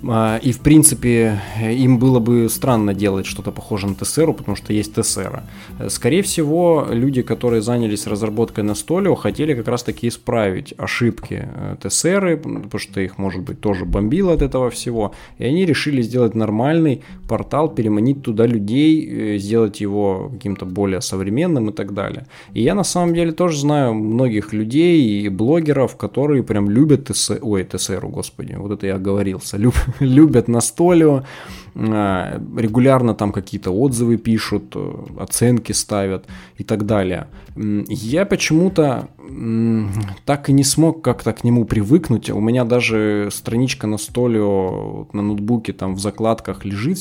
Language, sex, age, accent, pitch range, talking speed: Russian, male, 20-39, native, 105-135 Hz, 145 wpm